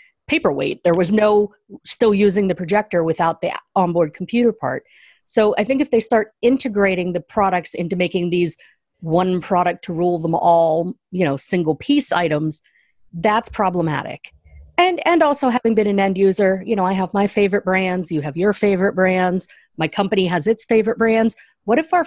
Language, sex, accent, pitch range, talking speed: English, female, American, 175-230 Hz, 180 wpm